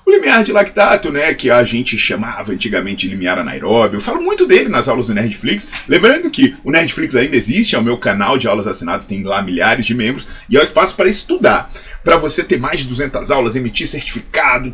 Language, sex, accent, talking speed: Portuguese, male, Brazilian, 215 wpm